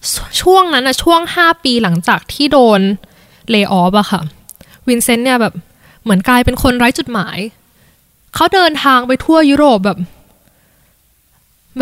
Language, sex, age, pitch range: Thai, female, 10-29, 200-275 Hz